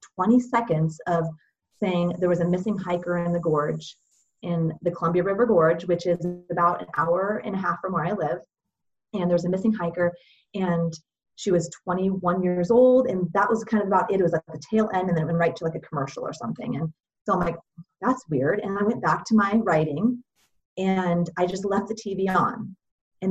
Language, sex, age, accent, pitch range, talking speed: English, female, 30-49, American, 170-210 Hz, 220 wpm